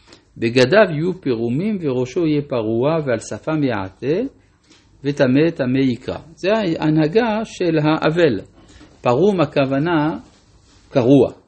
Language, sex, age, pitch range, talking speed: Hebrew, male, 50-69, 100-145 Hz, 100 wpm